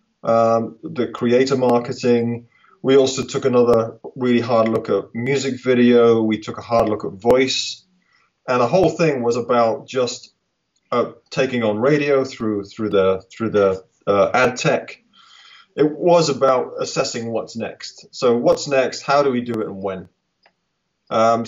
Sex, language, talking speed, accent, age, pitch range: male, English, 160 wpm, British, 30-49, 115-140 Hz